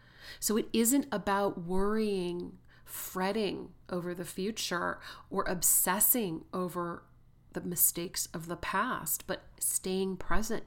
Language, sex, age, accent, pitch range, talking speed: English, female, 40-59, American, 165-200 Hz, 110 wpm